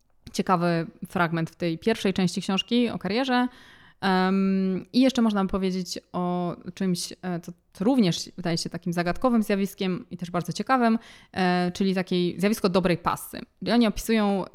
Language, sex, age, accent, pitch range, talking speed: Polish, female, 20-39, native, 175-200 Hz, 155 wpm